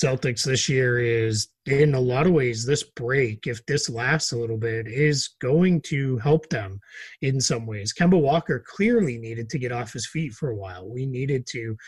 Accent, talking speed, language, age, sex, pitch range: American, 200 wpm, English, 30-49, male, 120-155 Hz